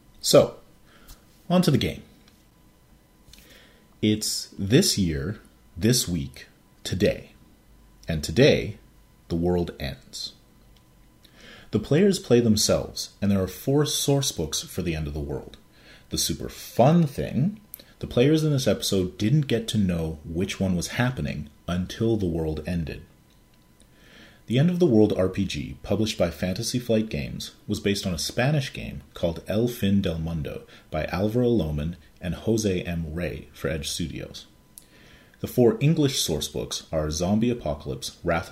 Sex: male